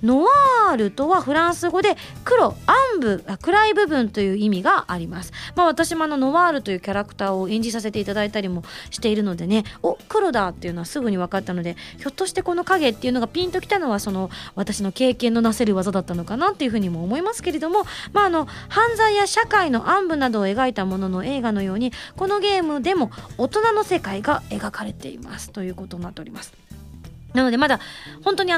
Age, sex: 20-39, female